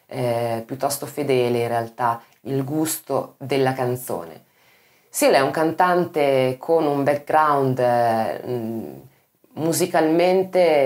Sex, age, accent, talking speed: female, 20-39, native, 105 wpm